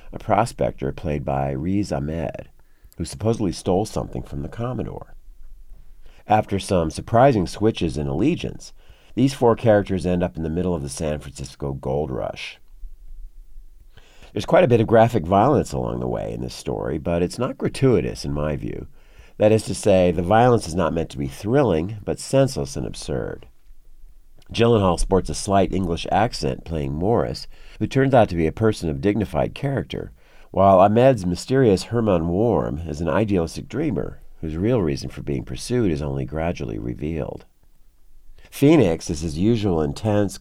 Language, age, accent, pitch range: English, 50-69, American, 70-110 Hz